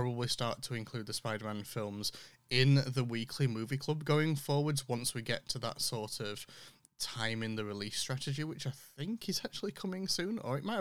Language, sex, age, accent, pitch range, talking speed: English, male, 20-39, British, 115-145 Hz, 200 wpm